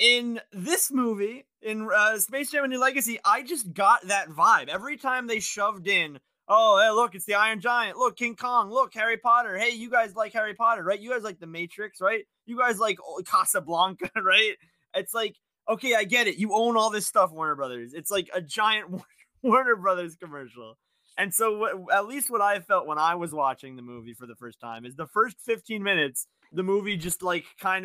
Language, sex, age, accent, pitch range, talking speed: English, male, 20-39, American, 155-230 Hz, 210 wpm